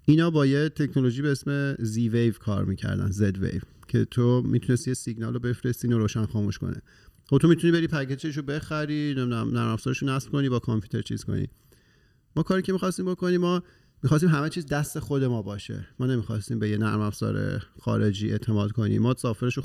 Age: 40-59